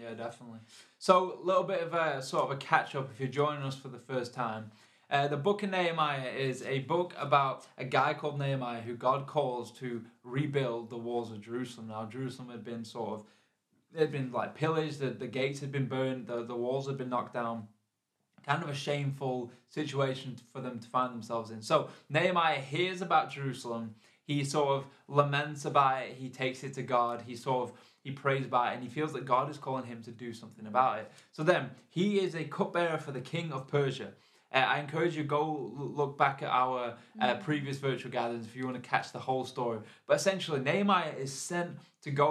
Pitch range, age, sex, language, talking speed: 125-150 Hz, 20-39, male, English, 215 wpm